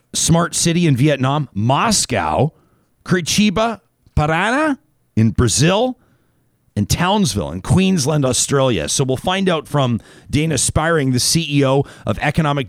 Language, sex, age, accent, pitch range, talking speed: English, male, 40-59, American, 120-160 Hz, 120 wpm